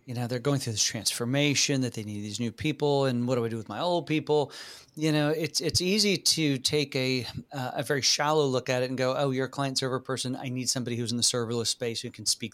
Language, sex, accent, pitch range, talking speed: English, male, American, 120-145 Hz, 270 wpm